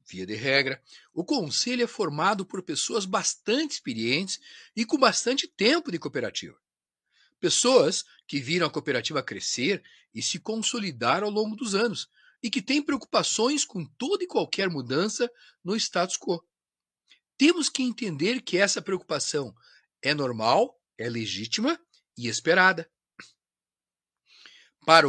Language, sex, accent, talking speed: Portuguese, male, Brazilian, 130 wpm